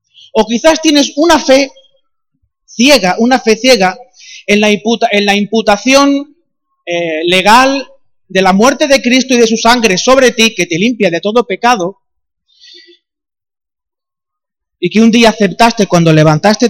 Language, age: Spanish, 30-49